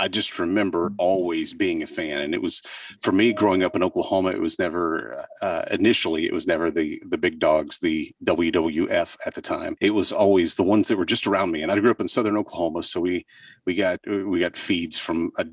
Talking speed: 230 wpm